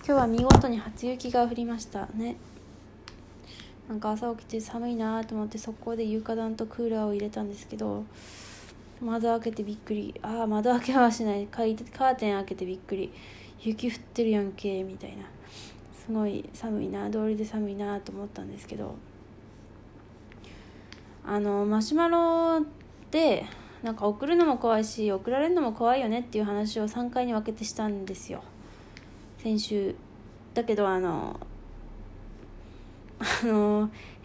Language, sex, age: Japanese, female, 20-39